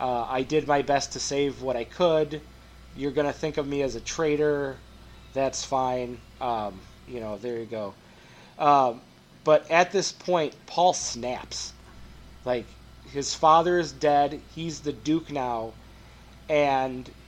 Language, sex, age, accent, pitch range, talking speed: English, male, 30-49, American, 125-155 Hz, 155 wpm